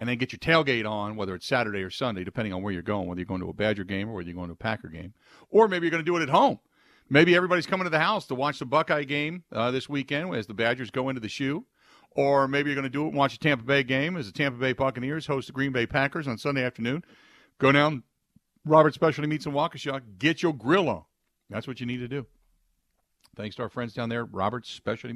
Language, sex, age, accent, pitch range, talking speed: English, male, 50-69, American, 105-150 Hz, 265 wpm